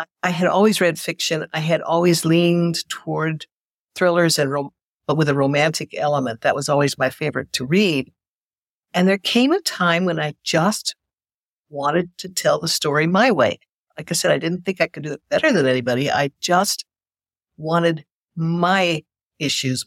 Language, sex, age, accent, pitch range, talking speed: English, female, 60-79, American, 145-180 Hz, 170 wpm